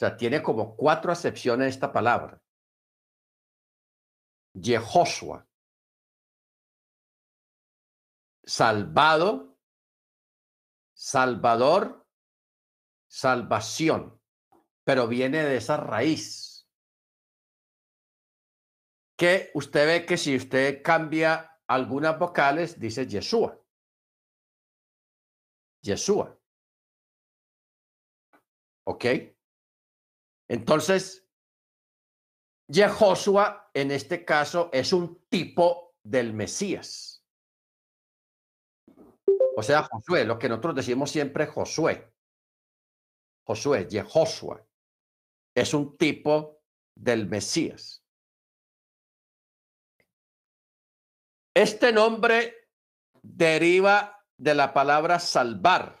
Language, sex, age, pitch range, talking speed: Spanish, male, 50-69, 125-175 Hz, 70 wpm